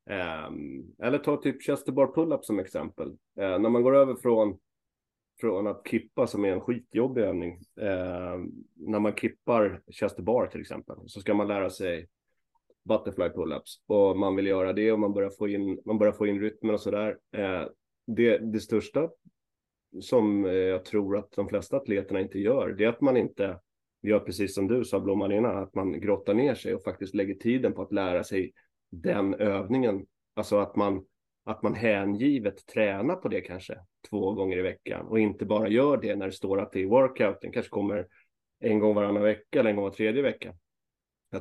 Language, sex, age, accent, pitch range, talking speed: Swedish, male, 30-49, native, 100-115 Hz, 185 wpm